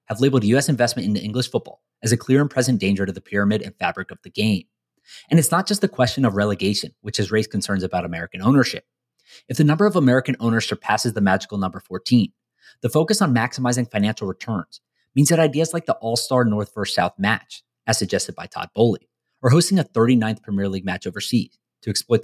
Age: 30-49